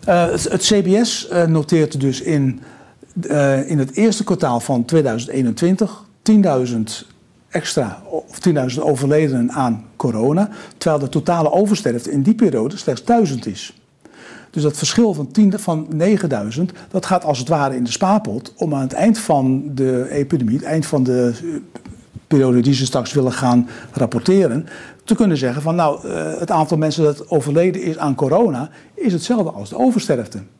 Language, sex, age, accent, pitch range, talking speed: Dutch, male, 60-79, Dutch, 130-180 Hz, 155 wpm